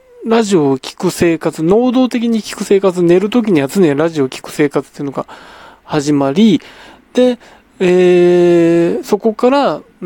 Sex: male